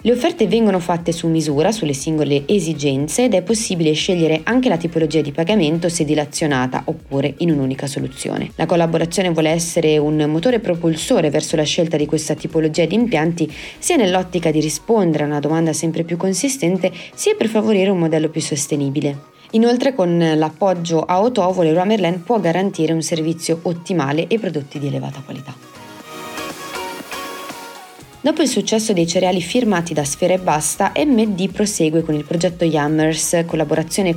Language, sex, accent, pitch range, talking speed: Italian, female, native, 155-195 Hz, 155 wpm